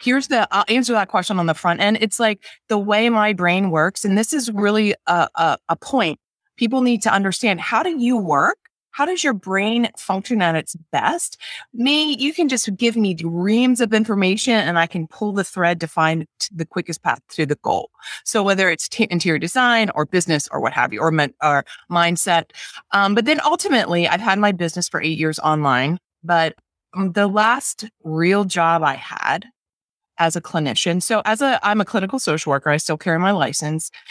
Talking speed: 200 wpm